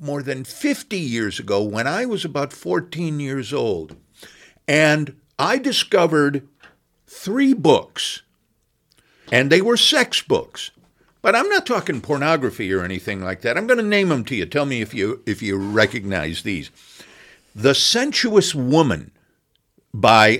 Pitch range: 110-180 Hz